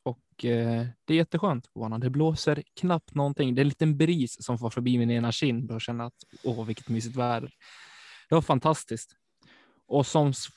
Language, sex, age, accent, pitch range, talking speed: Swedish, male, 20-39, native, 115-140 Hz, 175 wpm